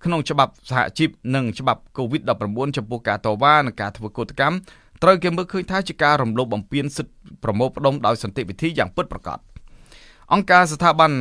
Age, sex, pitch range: 20-39, male, 115-150 Hz